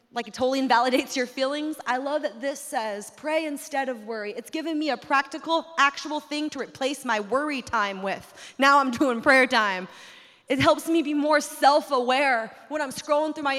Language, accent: English, American